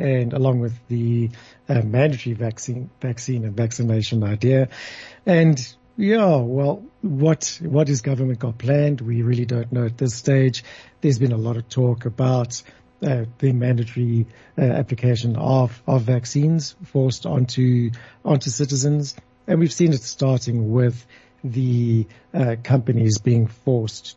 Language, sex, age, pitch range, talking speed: English, male, 60-79, 115-135 Hz, 140 wpm